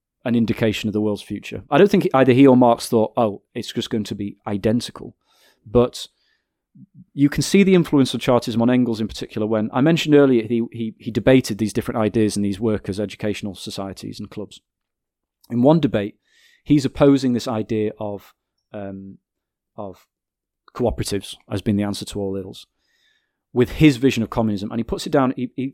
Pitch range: 105-130 Hz